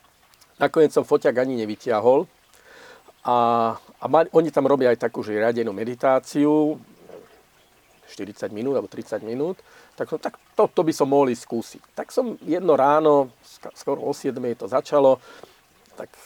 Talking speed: 140 wpm